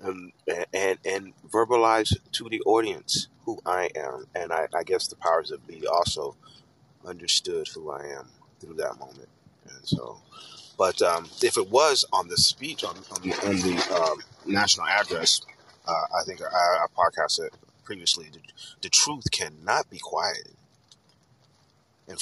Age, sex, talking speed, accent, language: 30-49, male, 160 wpm, American, English